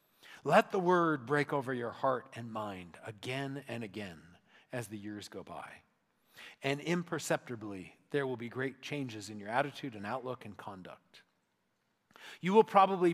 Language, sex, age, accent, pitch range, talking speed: English, male, 40-59, American, 130-180 Hz, 155 wpm